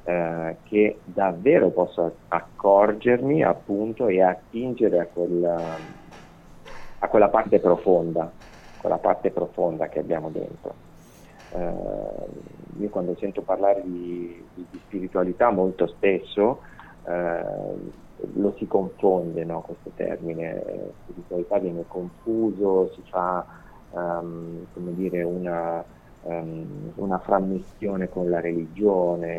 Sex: male